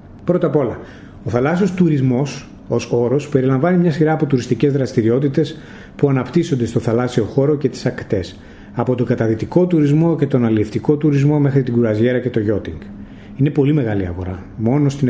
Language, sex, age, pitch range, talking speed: Greek, male, 30-49, 110-150 Hz, 165 wpm